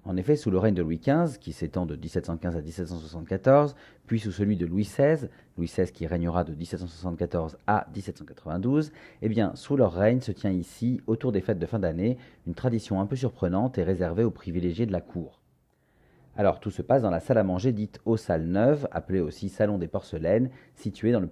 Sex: male